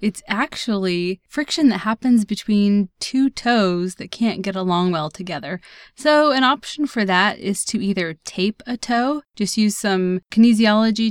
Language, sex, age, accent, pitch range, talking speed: English, female, 20-39, American, 185-240 Hz, 155 wpm